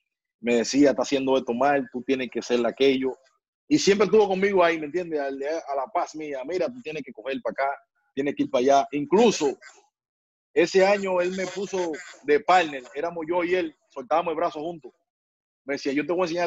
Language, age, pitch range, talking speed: Spanish, 30-49, 140-180 Hz, 210 wpm